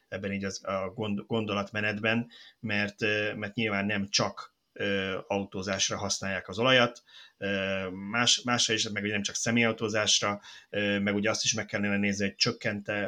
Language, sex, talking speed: Hungarian, male, 155 wpm